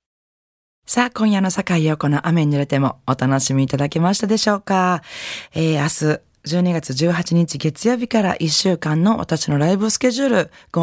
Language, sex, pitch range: Japanese, female, 140-210 Hz